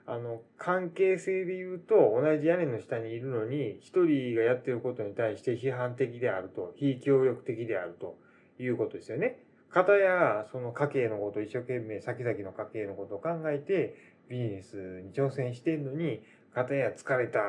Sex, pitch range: male, 110-160 Hz